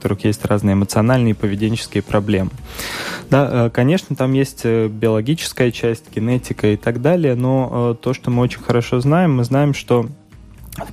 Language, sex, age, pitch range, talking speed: Russian, male, 20-39, 105-120 Hz, 155 wpm